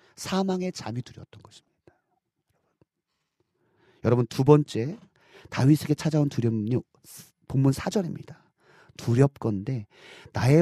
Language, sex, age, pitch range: Korean, male, 40-59, 130-210 Hz